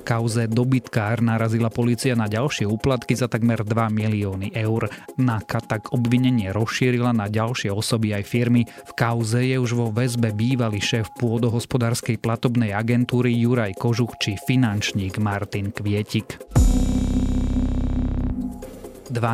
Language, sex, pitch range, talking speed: Slovak, male, 105-125 Hz, 125 wpm